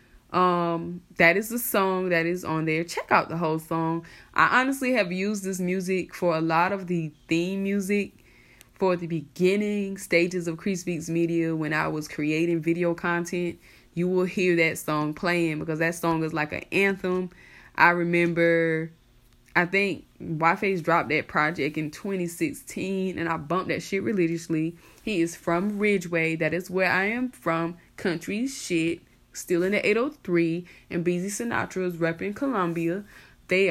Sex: female